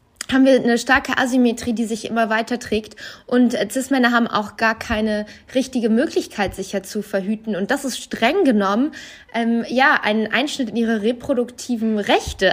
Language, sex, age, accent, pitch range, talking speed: German, female, 20-39, German, 215-260 Hz, 170 wpm